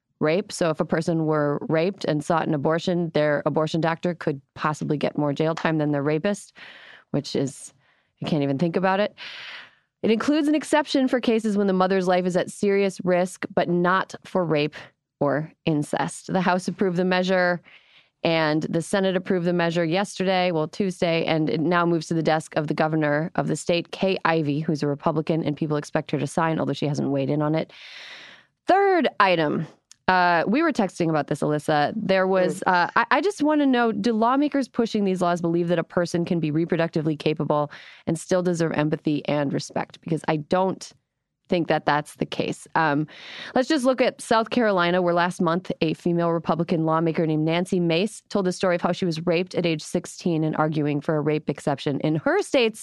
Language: English